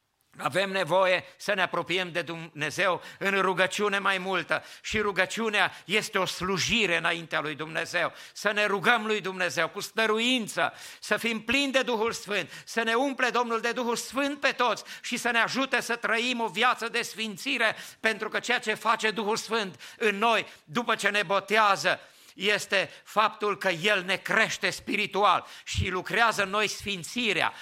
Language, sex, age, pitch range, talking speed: English, male, 50-69, 190-230 Hz, 165 wpm